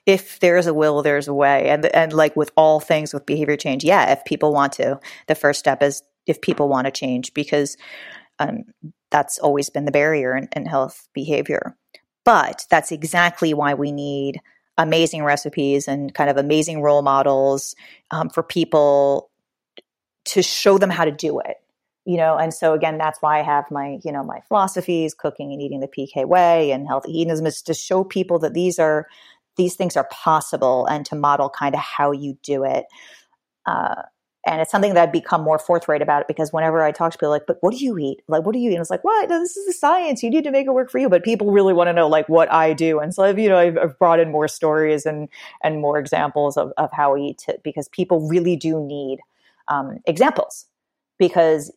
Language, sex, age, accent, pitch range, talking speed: English, female, 30-49, American, 145-180 Hz, 220 wpm